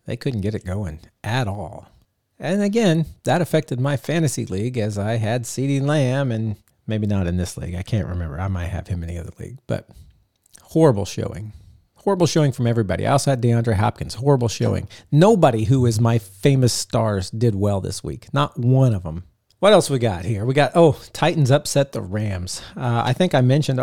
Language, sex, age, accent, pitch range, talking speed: English, male, 40-59, American, 110-140 Hz, 200 wpm